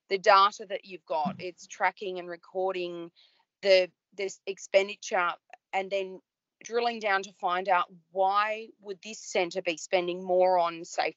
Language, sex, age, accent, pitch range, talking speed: English, female, 30-49, Australian, 180-215 Hz, 150 wpm